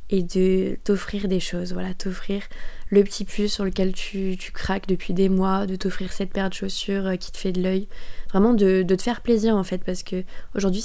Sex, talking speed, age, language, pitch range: female, 220 wpm, 20-39, French, 185-205 Hz